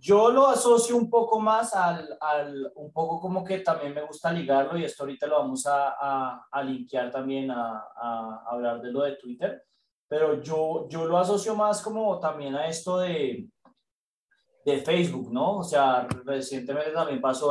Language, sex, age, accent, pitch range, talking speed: Spanish, male, 20-39, Colombian, 130-170 Hz, 180 wpm